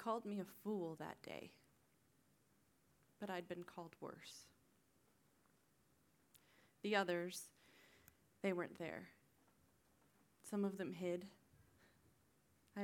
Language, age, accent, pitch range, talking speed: English, 20-39, American, 175-200 Hz, 100 wpm